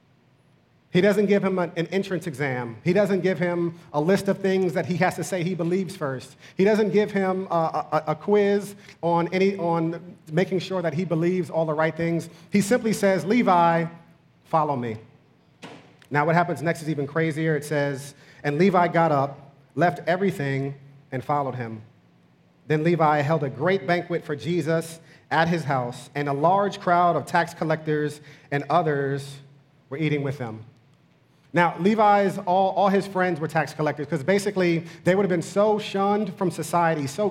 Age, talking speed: 40-59, 175 wpm